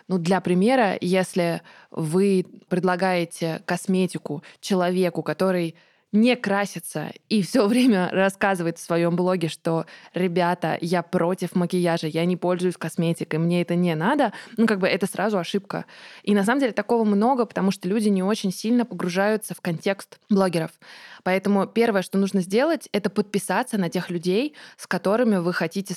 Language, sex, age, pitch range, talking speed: Russian, female, 20-39, 175-210 Hz, 155 wpm